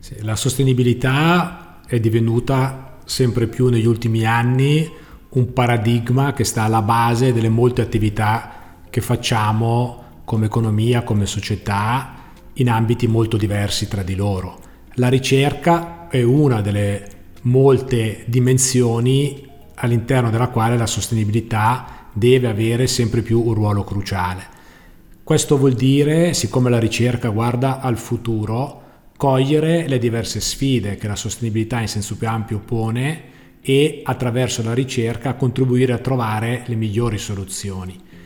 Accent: native